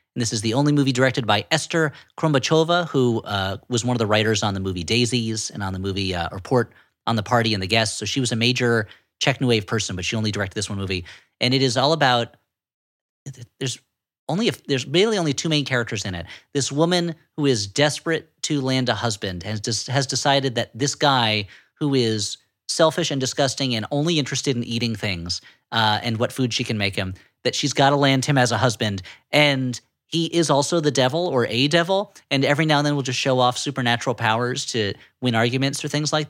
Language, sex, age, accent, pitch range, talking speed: English, male, 40-59, American, 110-140 Hz, 225 wpm